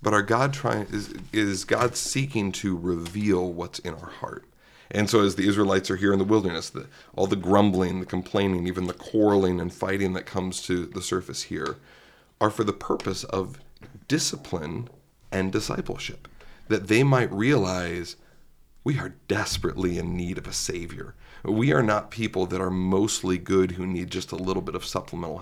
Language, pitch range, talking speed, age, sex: English, 90-105 Hz, 180 wpm, 40-59, male